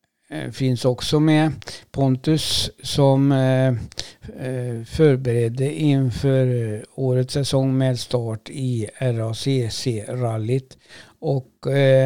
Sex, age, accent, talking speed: male, 60-79, native, 70 wpm